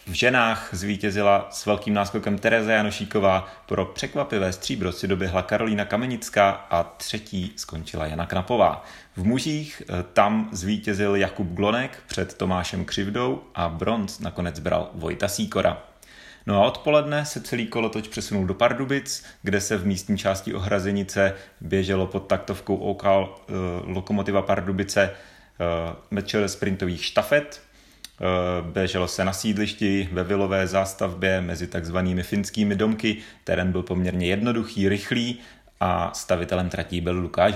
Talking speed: 130 wpm